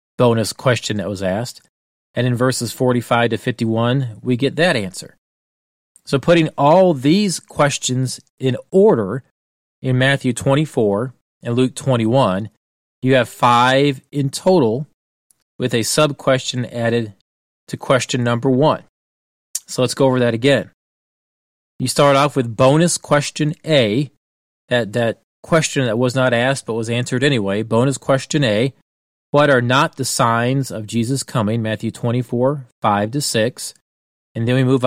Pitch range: 110-135 Hz